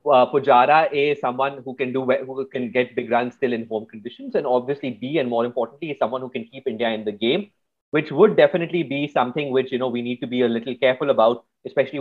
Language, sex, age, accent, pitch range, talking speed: English, male, 30-49, Indian, 120-145 Hz, 240 wpm